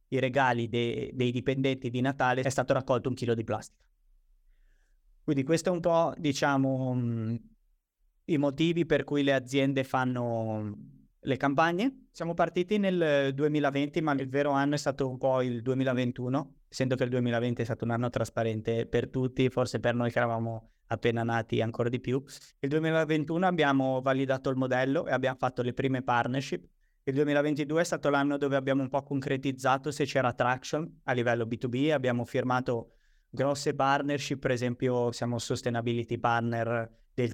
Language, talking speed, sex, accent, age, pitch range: Italian, 165 wpm, male, native, 20-39, 120-140 Hz